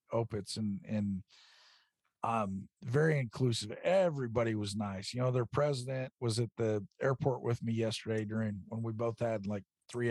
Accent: American